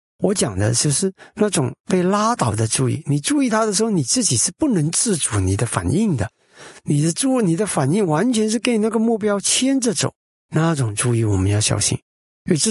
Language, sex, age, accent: Chinese, male, 50-69, native